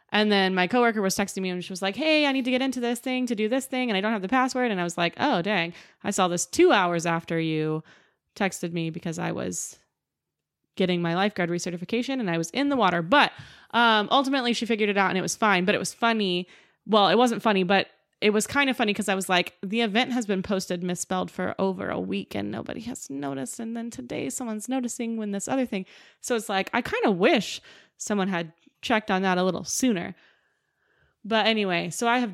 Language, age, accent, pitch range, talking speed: English, 20-39, American, 180-225 Hz, 240 wpm